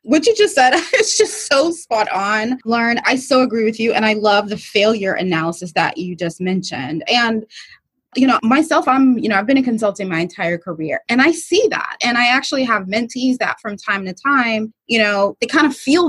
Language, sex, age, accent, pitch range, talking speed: English, female, 20-39, American, 200-255 Hz, 220 wpm